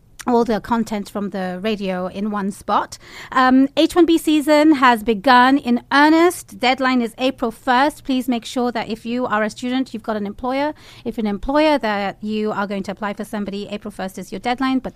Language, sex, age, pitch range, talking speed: English, female, 30-49, 210-250 Hz, 200 wpm